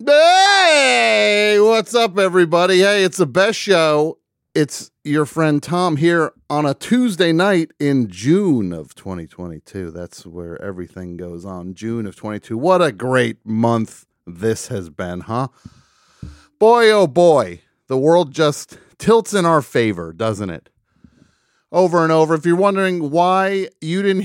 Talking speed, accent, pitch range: 145 wpm, American, 115-180 Hz